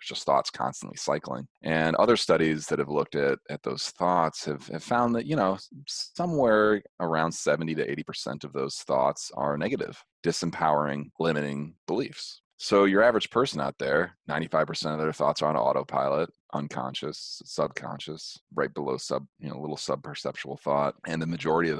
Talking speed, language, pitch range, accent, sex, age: 175 wpm, English, 70-80 Hz, American, male, 30-49